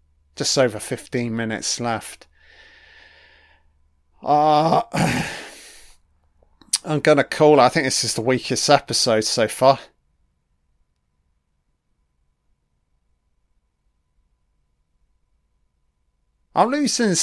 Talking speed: 75 wpm